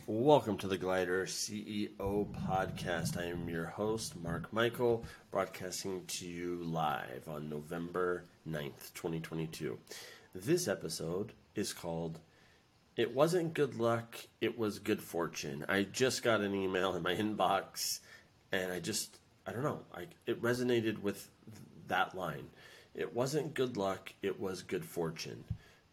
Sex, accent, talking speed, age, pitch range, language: male, American, 140 wpm, 30-49, 85-110 Hz, English